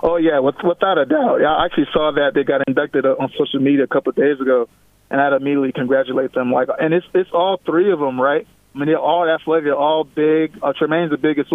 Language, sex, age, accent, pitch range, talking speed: English, male, 20-39, American, 140-170 Hz, 245 wpm